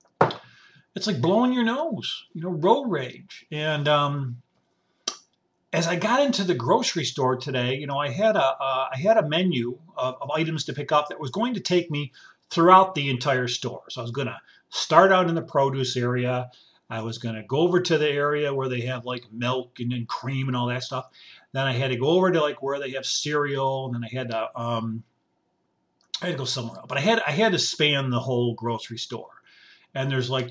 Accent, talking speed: American, 220 wpm